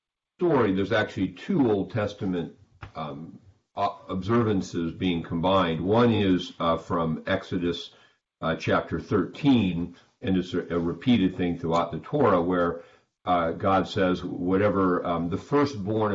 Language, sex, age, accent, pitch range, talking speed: English, male, 50-69, American, 85-100 Hz, 130 wpm